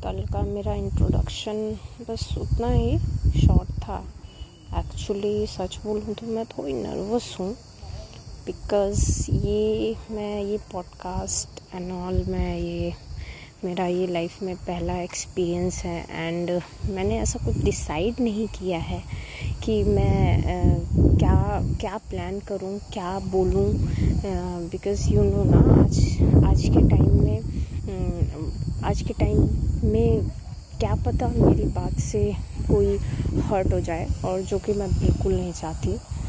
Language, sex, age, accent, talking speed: Hindi, female, 20-39, native, 130 wpm